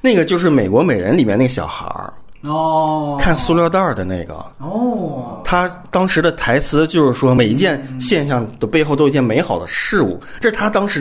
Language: Chinese